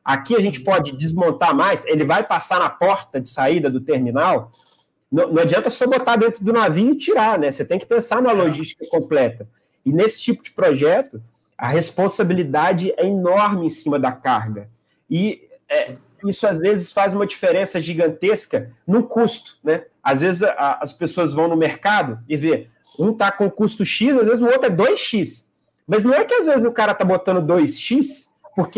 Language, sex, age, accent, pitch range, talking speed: Portuguese, male, 30-49, Brazilian, 160-230 Hz, 190 wpm